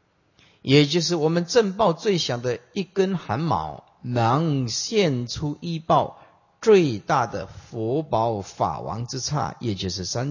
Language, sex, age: Chinese, male, 50-69